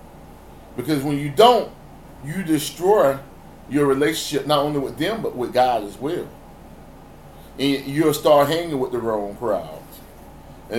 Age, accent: 30-49, American